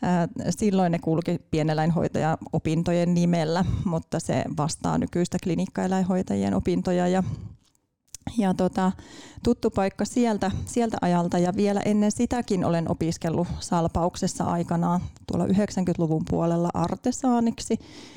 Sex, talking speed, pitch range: female, 105 wpm, 170-205 Hz